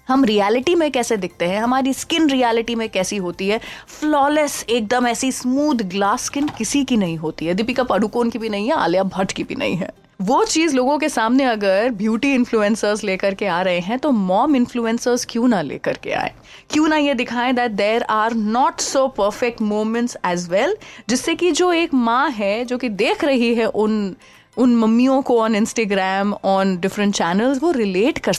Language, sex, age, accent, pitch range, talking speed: Hindi, female, 30-49, native, 215-280 Hz, 195 wpm